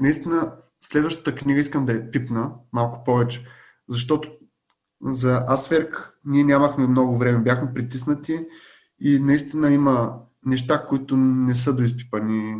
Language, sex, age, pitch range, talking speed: Bulgarian, male, 20-39, 120-140 Hz, 125 wpm